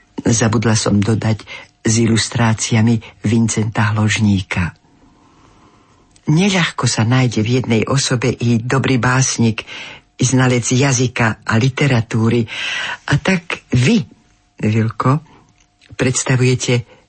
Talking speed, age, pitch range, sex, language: 90 wpm, 50-69, 115-155 Hz, female, Slovak